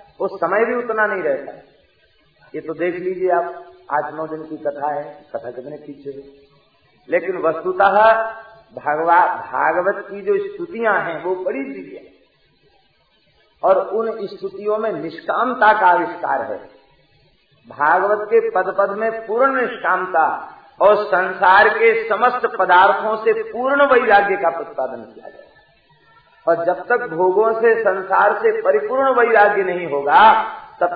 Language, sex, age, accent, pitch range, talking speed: Hindi, male, 50-69, native, 145-215 Hz, 140 wpm